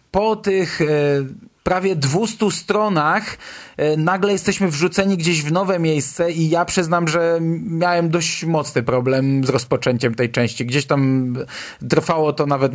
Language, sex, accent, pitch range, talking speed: Polish, male, native, 130-170 Hz, 135 wpm